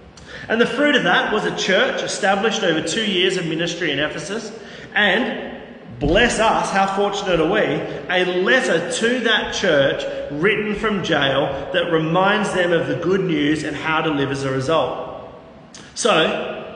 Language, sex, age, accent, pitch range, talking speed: English, male, 30-49, Australian, 170-210 Hz, 165 wpm